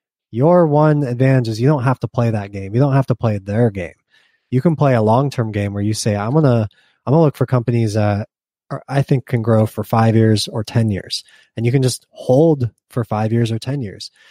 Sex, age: male, 20-39